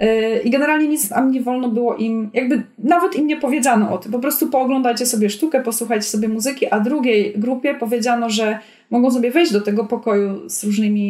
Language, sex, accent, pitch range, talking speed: Polish, female, native, 225-270 Hz, 195 wpm